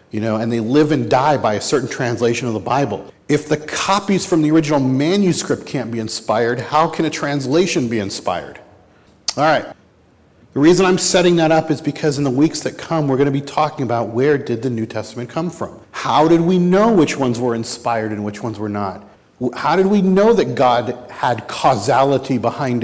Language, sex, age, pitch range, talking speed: English, male, 50-69, 110-150 Hz, 210 wpm